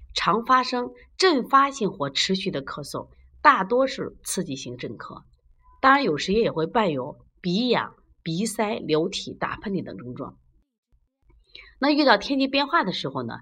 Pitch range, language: 170-270 Hz, Chinese